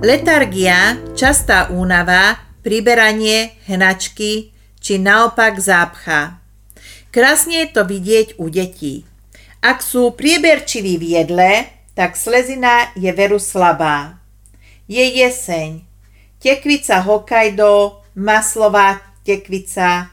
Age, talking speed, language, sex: 40-59, 90 wpm, Slovak, female